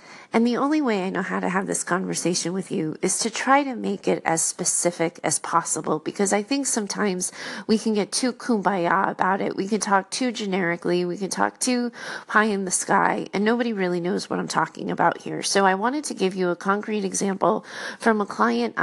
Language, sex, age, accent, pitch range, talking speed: English, female, 30-49, American, 175-215 Hz, 215 wpm